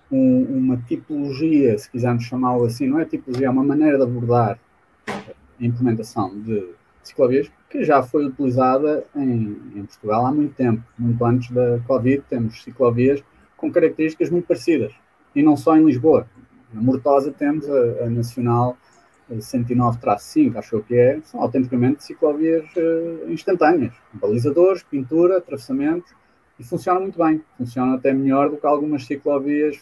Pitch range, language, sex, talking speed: 125-160 Hz, Portuguese, male, 145 wpm